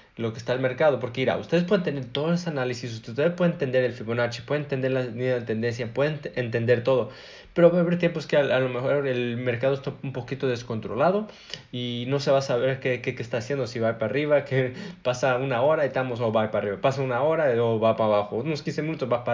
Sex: male